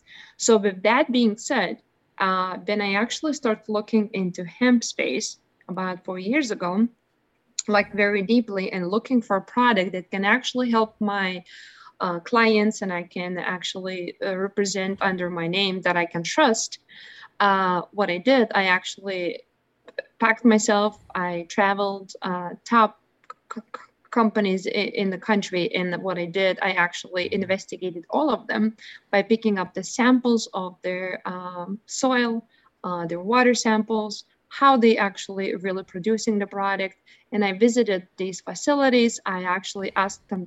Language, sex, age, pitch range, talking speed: English, female, 20-39, 185-220 Hz, 150 wpm